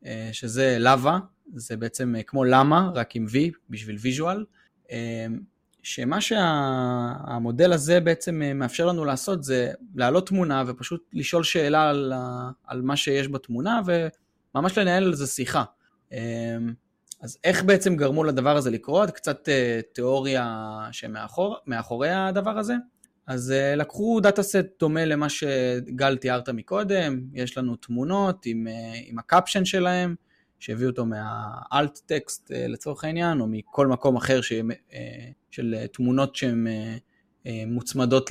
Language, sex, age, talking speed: Hebrew, male, 20-39, 120 wpm